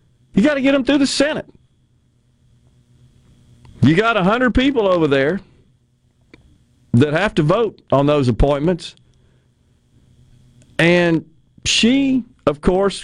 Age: 40-59